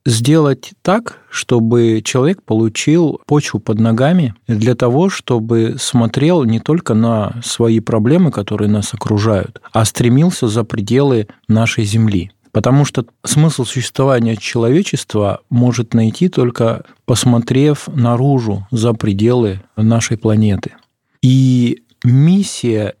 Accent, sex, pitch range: native, male, 110-130 Hz